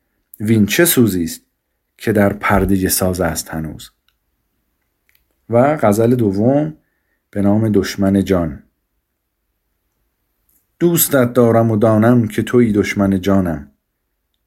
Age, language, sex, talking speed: 40-59, Persian, male, 100 wpm